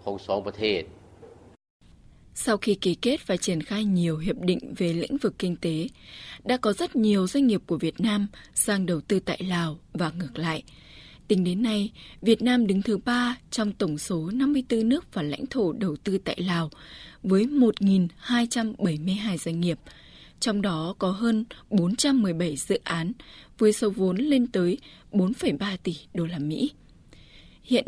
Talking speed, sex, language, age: 155 wpm, female, Vietnamese, 20-39